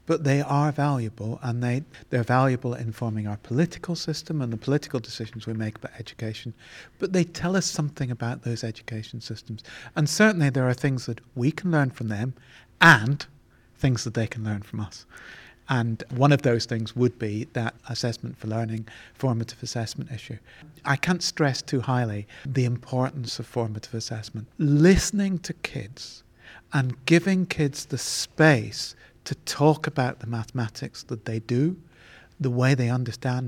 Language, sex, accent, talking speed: English, male, British, 165 wpm